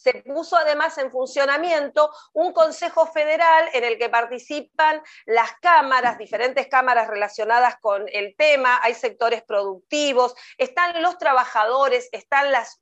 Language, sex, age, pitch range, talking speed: Spanish, female, 40-59, 240-315 Hz, 130 wpm